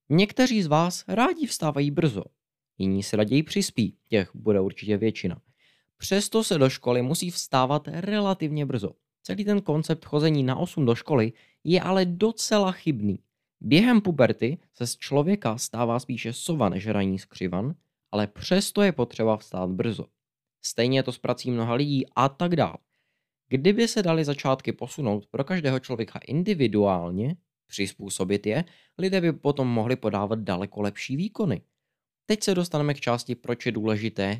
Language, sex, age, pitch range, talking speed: Czech, male, 20-39, 110-165 Hz, 150 wpm